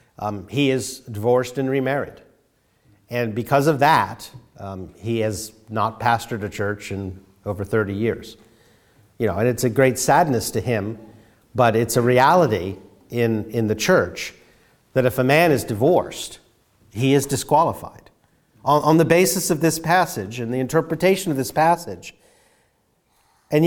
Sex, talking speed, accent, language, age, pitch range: male, 155 wpm, American, English, 50-69, 120-175 Hz